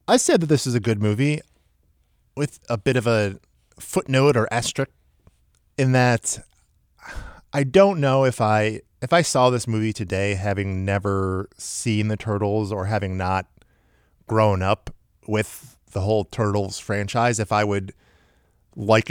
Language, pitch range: English, 95-130 Hz